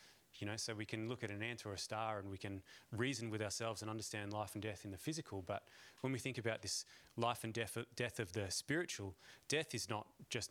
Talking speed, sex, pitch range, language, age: 245 wpm, male, 100-125 Hz, English, 30-49